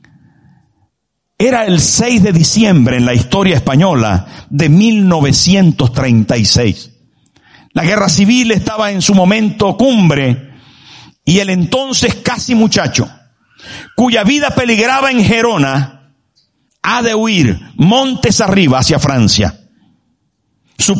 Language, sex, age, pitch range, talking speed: Spanish, male, 50-69, 140-220 Hz, 105 wpm